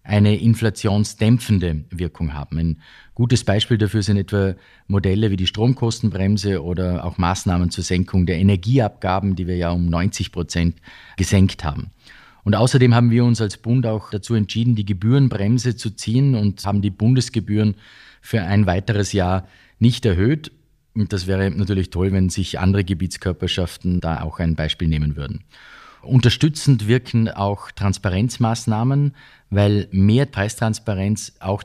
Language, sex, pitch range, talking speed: German, male, 95-115 Hz, 140 wpm